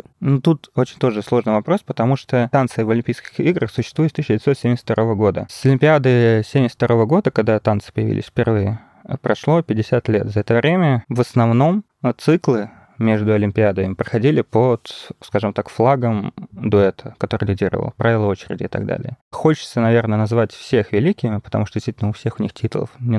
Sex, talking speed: male, 160 wpm